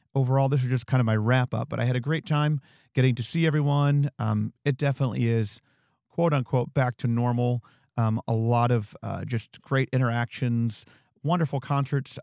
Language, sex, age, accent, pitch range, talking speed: English, male, 40-59, American, 110-135 Hz, 185 wpm